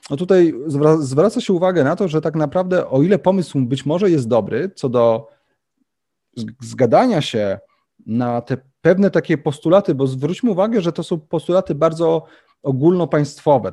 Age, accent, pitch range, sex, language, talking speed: 30-49, native, 125-170 Hz, male, Polish, 155 wpm